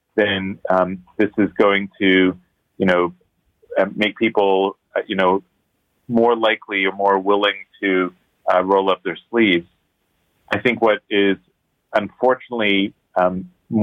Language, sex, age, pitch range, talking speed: English, male, 40-59, 90-105 Hz, 130 wpm